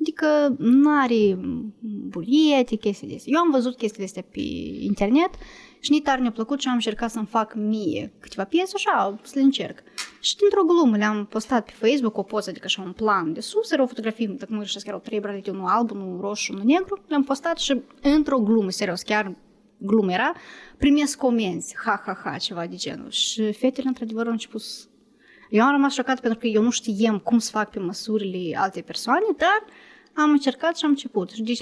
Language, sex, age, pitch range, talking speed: Romanian, female, 20-39, 210-275 Hz, 200 wpm